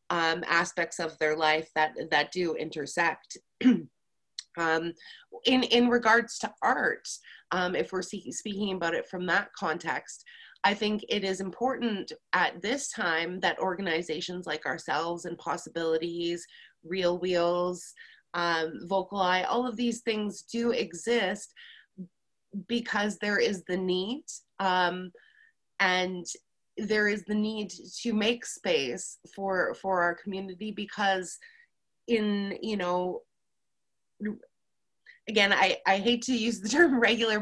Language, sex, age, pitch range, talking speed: English, female, 20-39, 175-225 Hz, 130 wpm